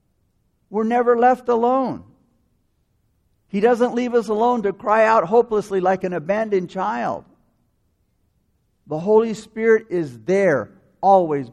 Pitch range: 185-230 Hz